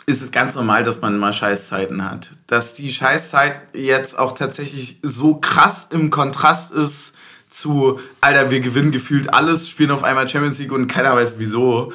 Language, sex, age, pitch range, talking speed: German, male, 20-39, 120-145 Hz, 175 wpm